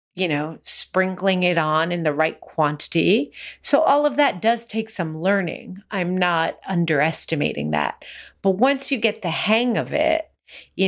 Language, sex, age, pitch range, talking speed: English, female, 30-49, 170-210 Hz, 165 wpm